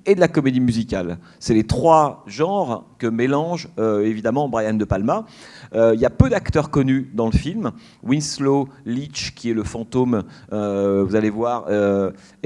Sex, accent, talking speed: male, French, 180 wpm